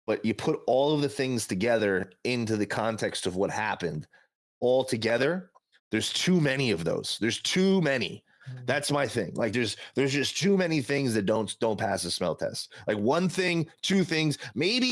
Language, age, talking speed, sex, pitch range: English, 30-49, 190 wpm, male, 110-150 Hz